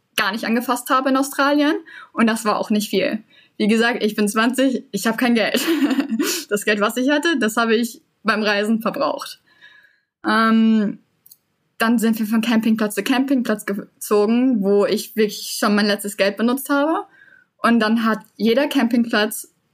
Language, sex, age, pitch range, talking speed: German, female, 10-29, 205-250 Hz, 165 wpm